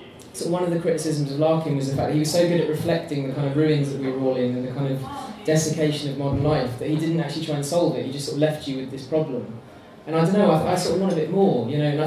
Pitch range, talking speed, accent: 140-160 Hz, 330 wpm, British